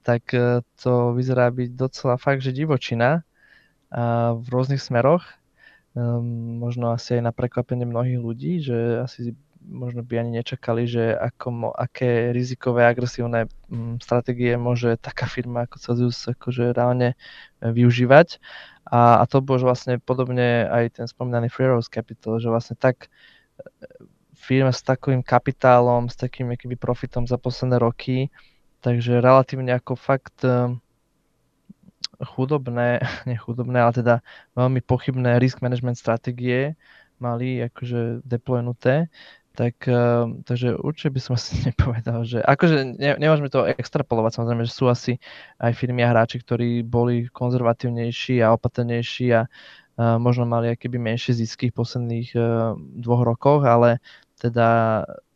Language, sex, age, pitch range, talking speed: Slovak, male, 20-39, 120-130 Hz, 130 wpm